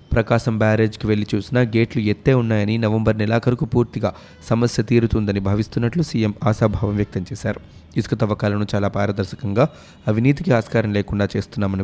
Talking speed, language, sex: 125 wpm, Telugu, male